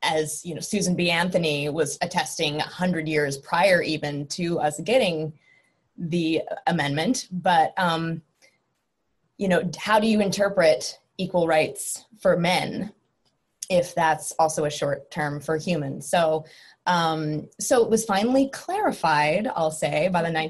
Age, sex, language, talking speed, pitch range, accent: 20-39, female, English, 140 wpm, 155-185 Hz, American